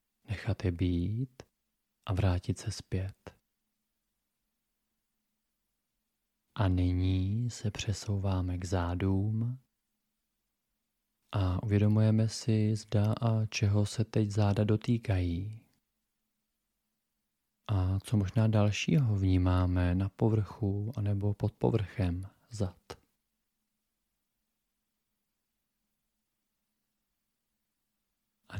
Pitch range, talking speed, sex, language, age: 95-110 Hz, 75 wpm, male, Czech, 30-49